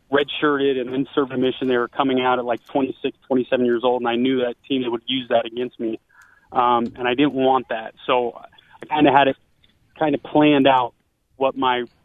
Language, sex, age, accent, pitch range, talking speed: English, male, 30-49, American, 120-130 Hz, 225 wpm